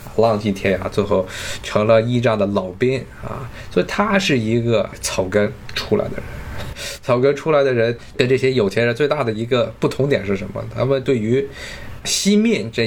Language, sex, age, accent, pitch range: Chinese, male, 20-39, native, 105-135 Hz